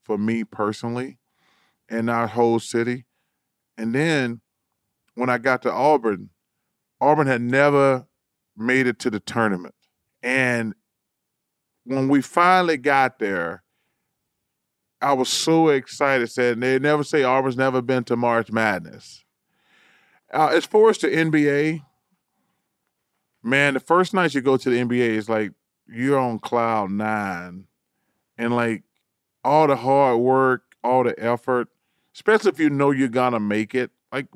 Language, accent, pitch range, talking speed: English, American, 110-140 Hz, 145 wpm